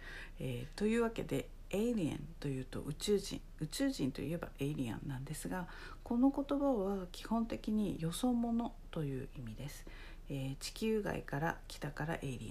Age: 50-69